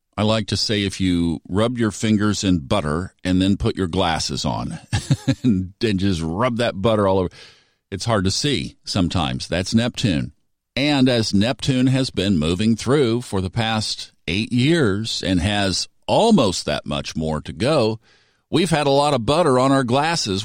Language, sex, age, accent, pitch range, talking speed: English, male, 50-69, American, 100-130 Hz, 175 wpm